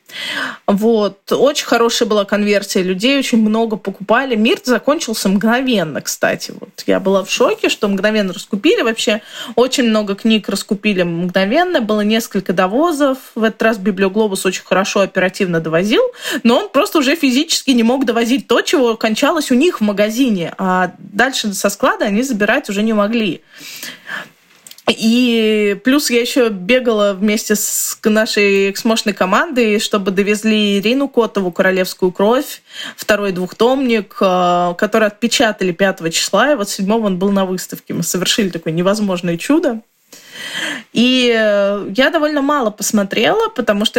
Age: 20-39